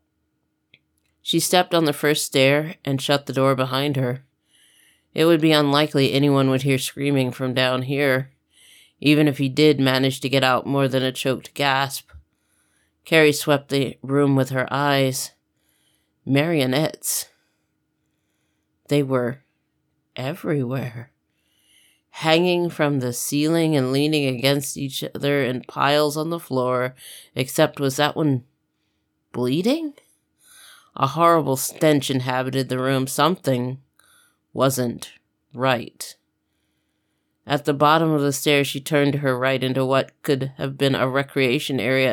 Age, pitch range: 30-49, 130-150 Hz